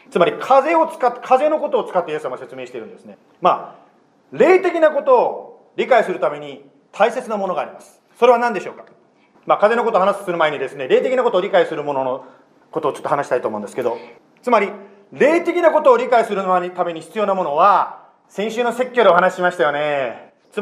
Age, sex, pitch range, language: 40-59, male, 185-280 Hz, Japanese